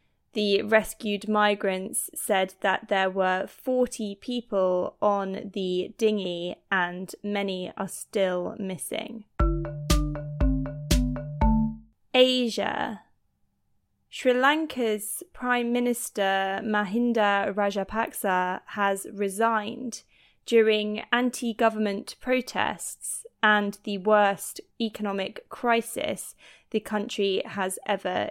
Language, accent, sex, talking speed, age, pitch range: English, British, female, 80 wpm, 20-39, 195-230 Hz